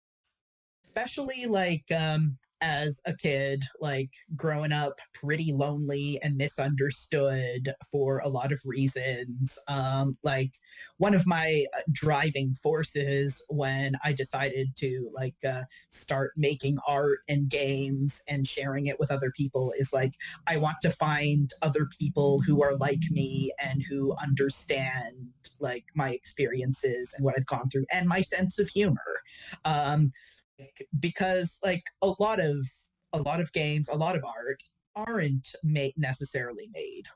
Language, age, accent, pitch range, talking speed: English, 30-49, American, 135-160 Hz, 140 wpm